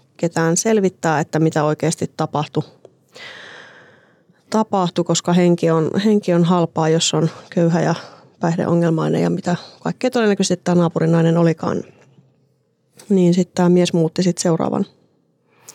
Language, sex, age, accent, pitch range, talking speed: Finnish, female, 30-49, native, 165-200 Hz, 120 wpm